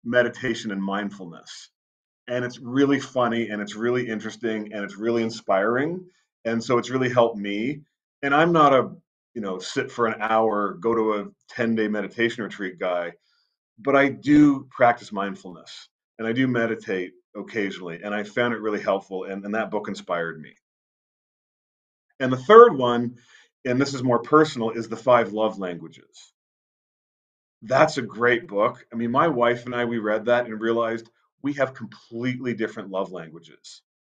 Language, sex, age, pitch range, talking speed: English, male, 40-59, 110-140 Hz, 170 wpm